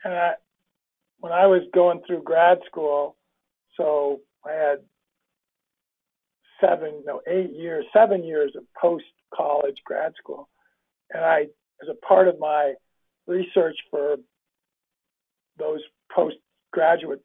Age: 50-69